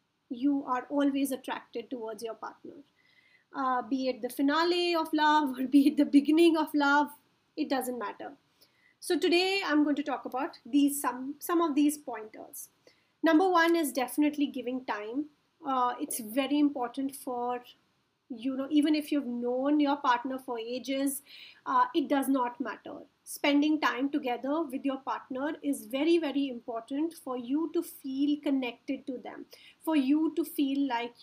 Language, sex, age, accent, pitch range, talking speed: English, female, 30-49, Indian, 255-300 Hz, 165 wpm